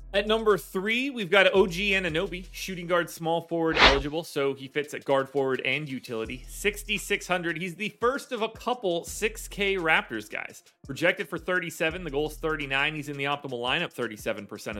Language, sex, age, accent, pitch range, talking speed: English, male, 30-49, American, 135-185 Hz, 175 wpm